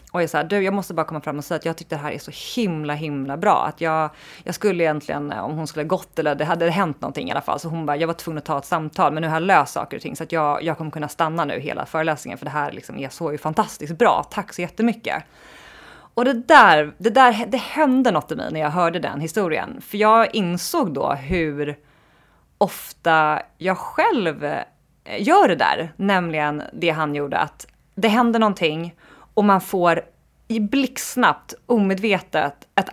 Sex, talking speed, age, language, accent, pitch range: female, 215 wpm, 30-49, Swedish, native, 155-210 Hz